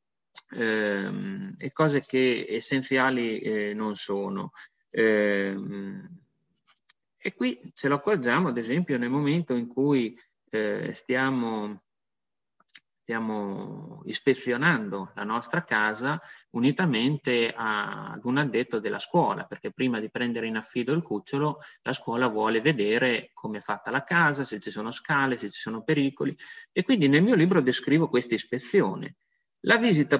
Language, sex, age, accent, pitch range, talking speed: Italian, male, 30-49, native, 120-160 Hz, 125 wpm